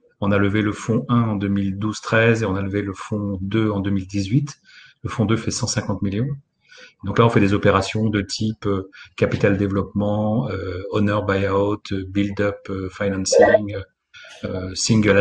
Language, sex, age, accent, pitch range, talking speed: French, male, 40-59, French, 100-120 Hz, 160 wpm